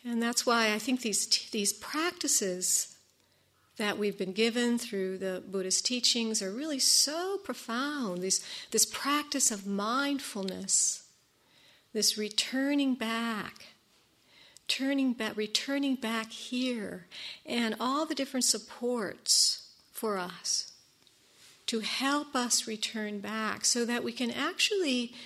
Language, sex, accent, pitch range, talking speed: English, female, American, 205-255 Hz, 115 wpm